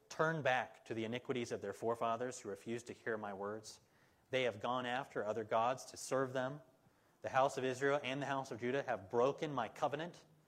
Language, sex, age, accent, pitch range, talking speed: English, male, 30-49, American, 110-135 Hz, 205 wpm